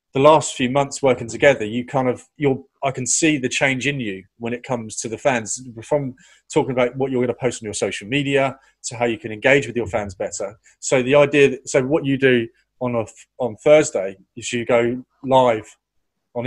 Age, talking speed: 30-49, 220 wpm